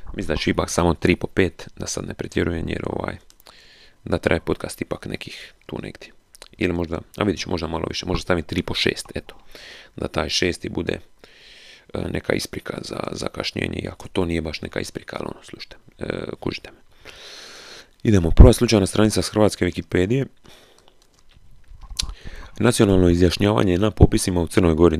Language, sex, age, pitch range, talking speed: Croatian, male, 30-49, 85-105 Hz, 165 wpm